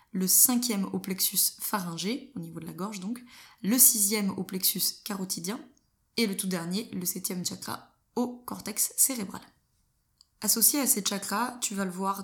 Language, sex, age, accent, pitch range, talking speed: French, female, 20-39, French, 180-215 Hz, 165 wpm